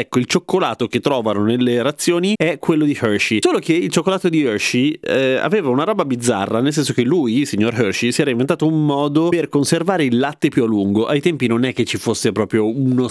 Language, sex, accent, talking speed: Italian, male, native, 230 wpm